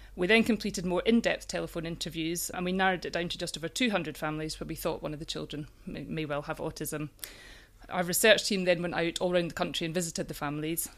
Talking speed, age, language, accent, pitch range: 230 wpm, 30-49, English, British, 160-180 Hz